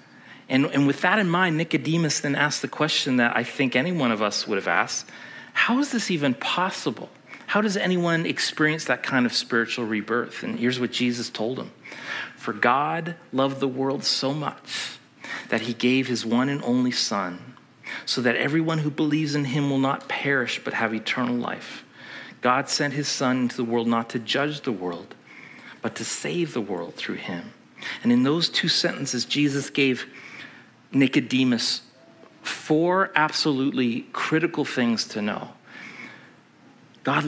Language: English